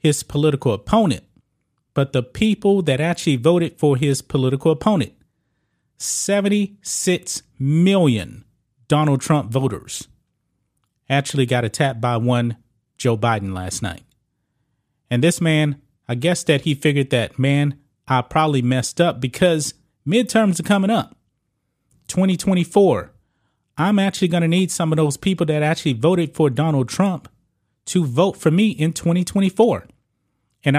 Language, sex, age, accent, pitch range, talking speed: English, male, 30-49, American, 125-175 Hz, 135 wpm